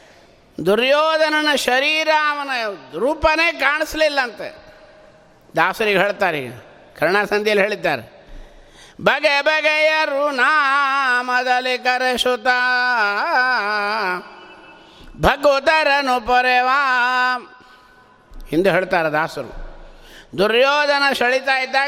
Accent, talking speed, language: native, 60 wpm, Kannada